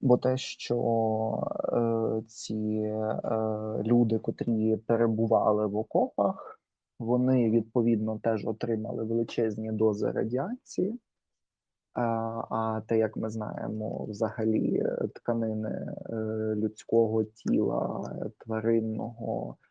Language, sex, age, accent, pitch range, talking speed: Ukrainian, male, 20-39, native, 110-125 Hz, 90 wpm